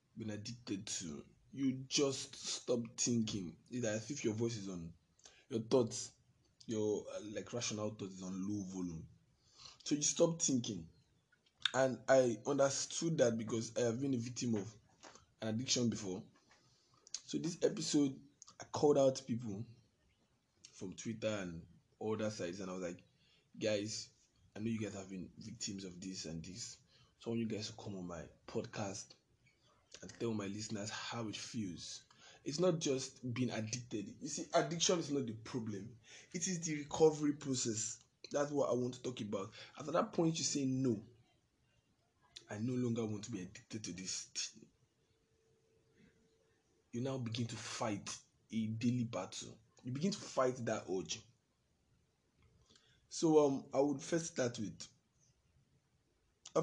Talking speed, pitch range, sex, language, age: 160 wpm, 105-130 Hz, male, English, 20-39